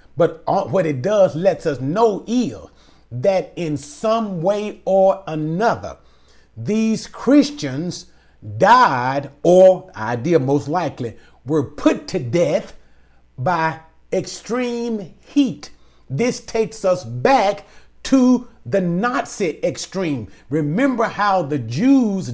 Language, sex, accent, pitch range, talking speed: English, male, American, 160-230 Hz, 105 wpm